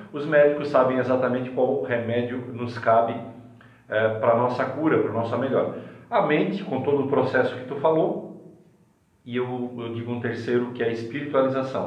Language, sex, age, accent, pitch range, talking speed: Portuguese, male, 40-59, Brazilian, 120-135 Hz, 175 wpm